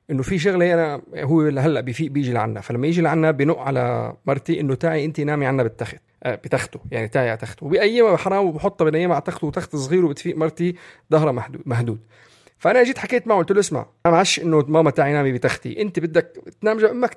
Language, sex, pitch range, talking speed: Arabic, male, 130-170 Hz, 200 wpm